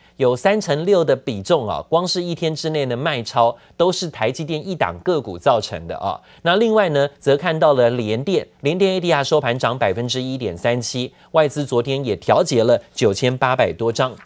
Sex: male